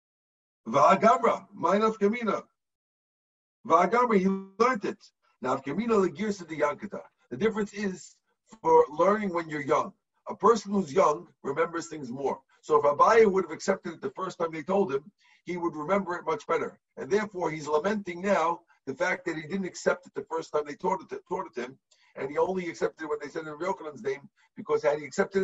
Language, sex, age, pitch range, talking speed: English, male, 50-69, 165-215 Hz, 200 wpm